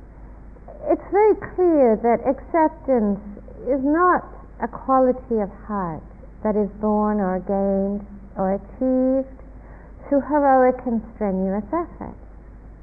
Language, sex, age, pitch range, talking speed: English, female, 60-79, 200-270 Hz, 110 wpm